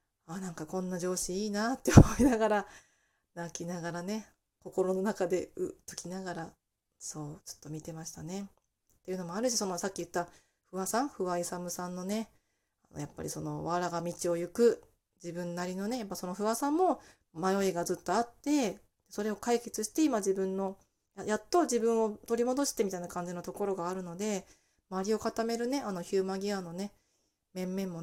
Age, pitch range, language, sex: 20-39, 175-220 Hz, Japanese, female